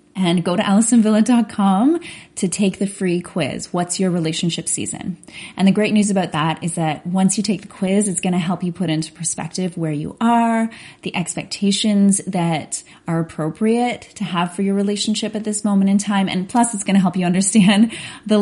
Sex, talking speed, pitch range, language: female, 200 wpm, 175-215 Hz, English